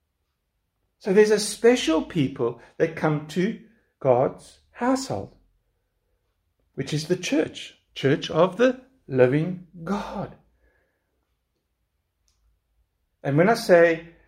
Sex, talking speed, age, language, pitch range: male, 95 wpm, 60-79, English, 115-175 Hz